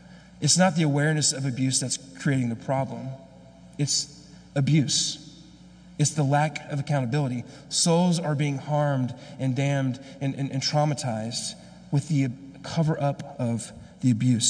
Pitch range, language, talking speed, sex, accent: 130-155 Hz, English, 135 wpm, male, American